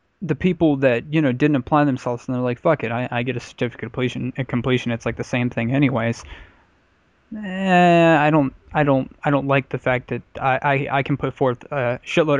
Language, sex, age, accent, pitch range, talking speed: English, male, 10-29, American, 120-145 Hz, 220 wpm